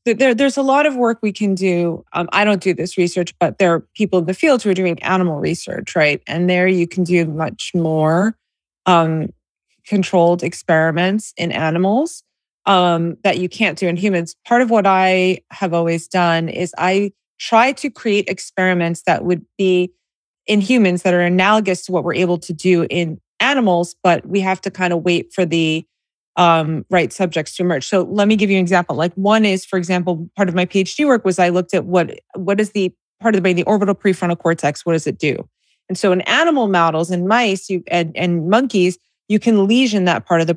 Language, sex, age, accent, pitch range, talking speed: English, female, 30-49, American, 170-205 Hz, 215 wpm